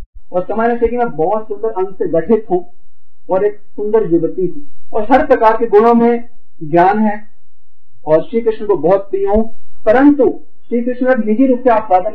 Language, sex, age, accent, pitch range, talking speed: Hindi, male, 50-69, native, 195-265 Hz, 185 wpm